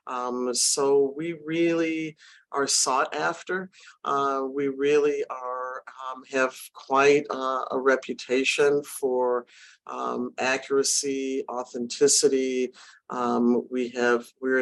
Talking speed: 105 wpm